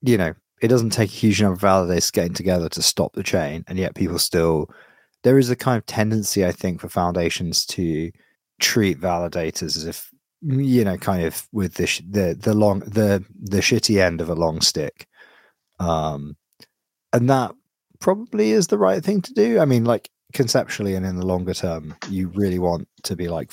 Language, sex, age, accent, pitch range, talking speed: English, male, 30-49, British, 90-120 Hz, 195 wpm